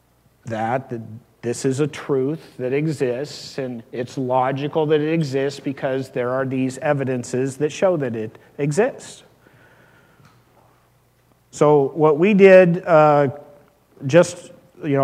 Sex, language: male, English